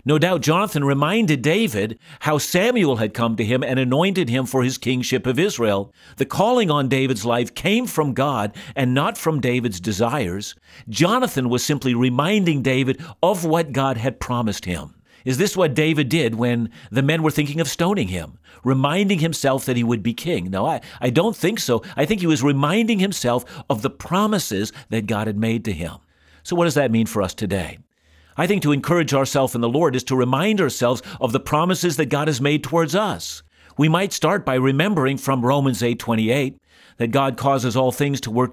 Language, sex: English, male